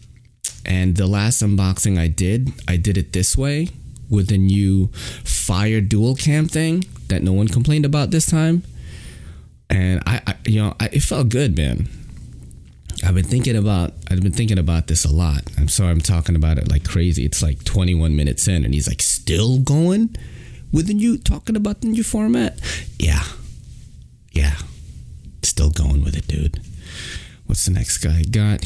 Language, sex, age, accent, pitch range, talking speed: English, male, 30-49, American, 85-120 Hz, 175 wpm